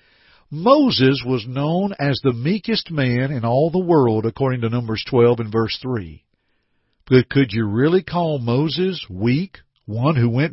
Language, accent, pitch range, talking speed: English, American, 120-160 Hz, 160 wpm